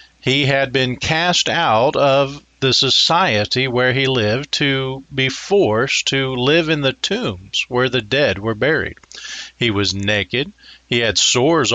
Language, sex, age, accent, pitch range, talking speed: English, male, 40-59, American, 110-155 Hz, 155 wpm